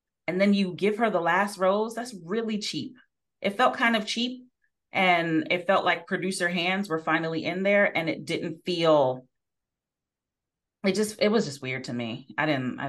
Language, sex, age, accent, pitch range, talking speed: English, female, 30-49, American, 135-185 Hz, 180 wpm